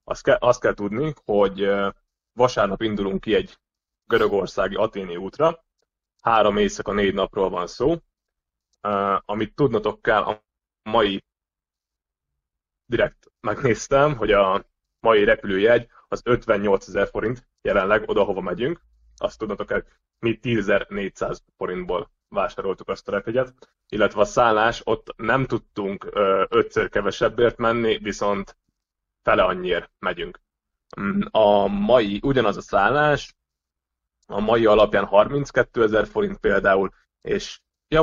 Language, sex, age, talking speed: Hungarian, male, 20-39, 120 wpm